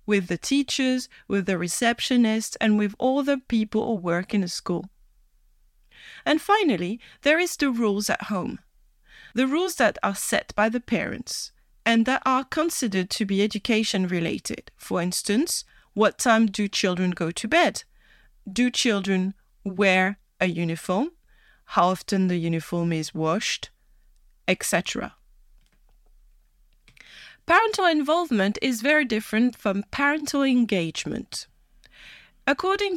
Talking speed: 125 wpm